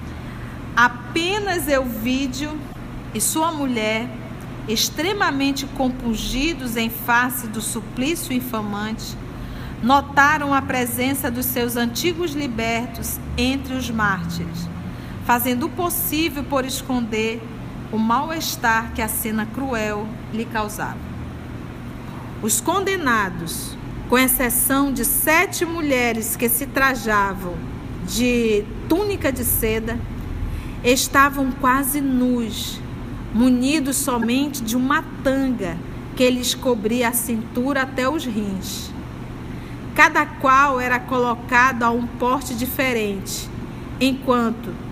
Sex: female